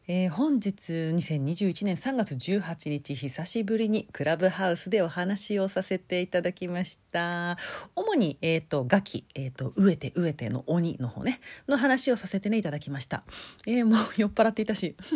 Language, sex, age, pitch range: Japanese, female, 40-59, 165-240 Hz